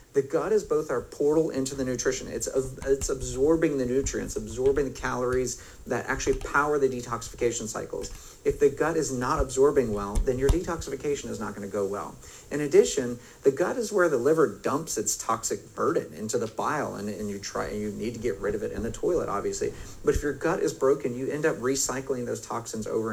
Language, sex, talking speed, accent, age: English, male, 215 wpm, American, 40-59